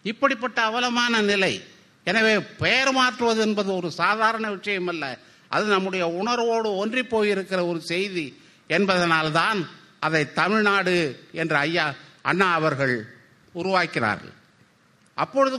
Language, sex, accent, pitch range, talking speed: Tamil, male, native, 155-195 Hz, 100 wpm